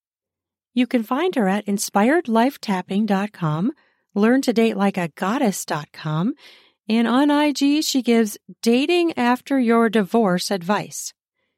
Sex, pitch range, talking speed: female, 185-245 Hz, 90 wpm